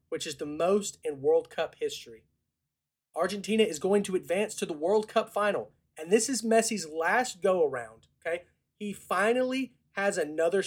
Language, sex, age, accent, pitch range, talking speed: English, male, 30-49, American, 150-210 Hz, 165 wpm